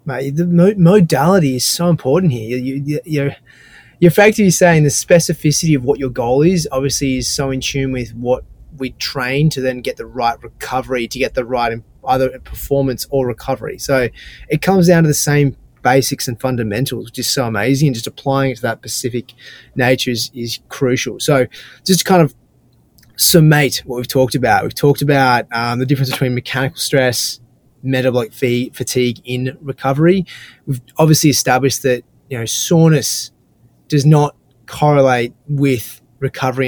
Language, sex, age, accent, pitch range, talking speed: English, male, 20-39, Australian, 125-150 Hz, 170 wpm